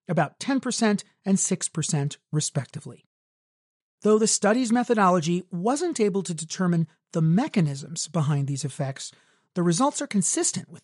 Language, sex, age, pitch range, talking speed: English, male, 40-59, 155-210 Hz, 125 wpm